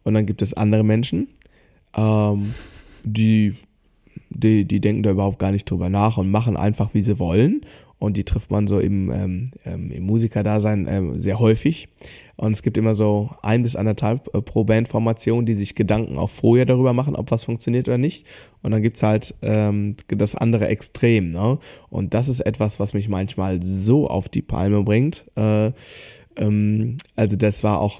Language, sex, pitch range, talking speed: German, male, 105-115 Hz, 180 wpm